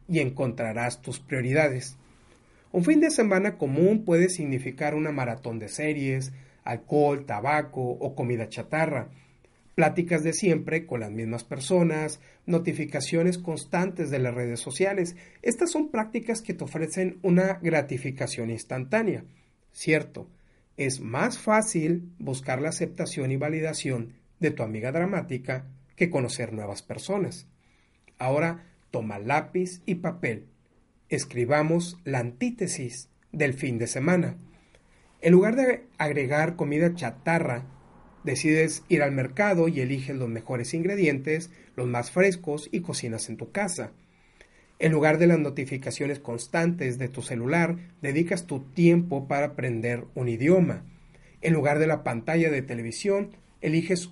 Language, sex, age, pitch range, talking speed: Spanish, male, 40-59, 125-170 Hz, 130 wpm